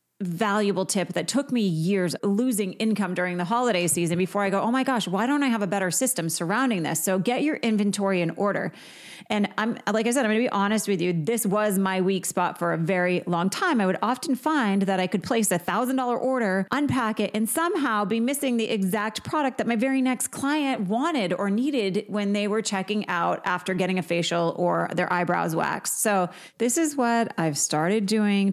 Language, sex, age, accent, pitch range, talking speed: English, female, 30-49, American, 175-220 Hz, 215 wpm